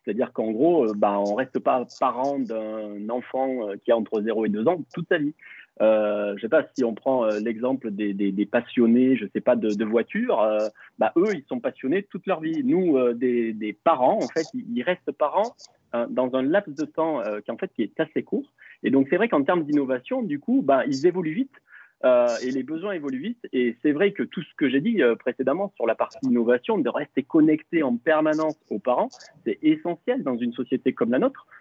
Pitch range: 115-175 Hz